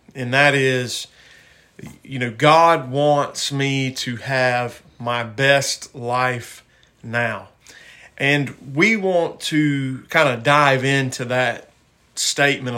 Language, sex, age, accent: English, male, 40-59, American